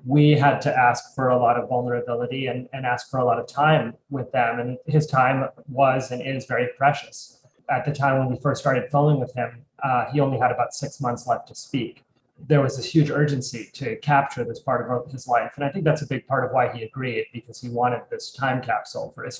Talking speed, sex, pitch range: 240 wpm, male, 125-145 Hz